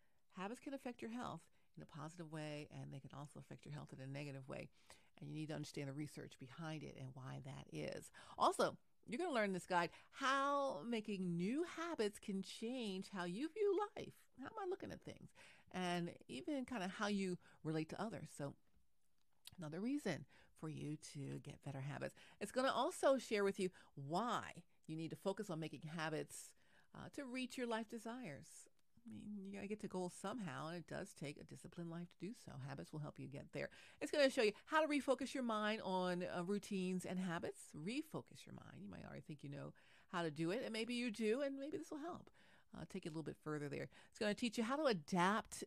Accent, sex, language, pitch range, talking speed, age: American, female, English, 155-230 Hz, 225 wpm, 40-59